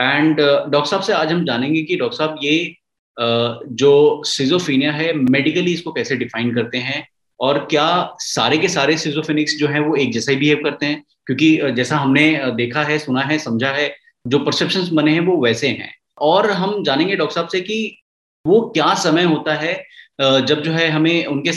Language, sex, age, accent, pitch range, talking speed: Hindi, male, 20-39, native, 135-165 Hz, 190 wpm